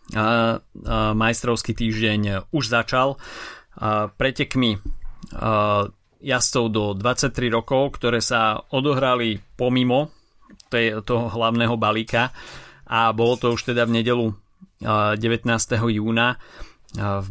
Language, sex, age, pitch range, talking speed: Slovak, male, 30-49, 105-120 Hz, 95 wpm